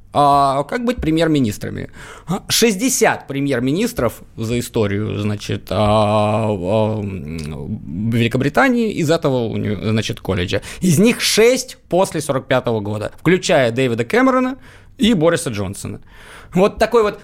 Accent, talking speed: native, 95 wpm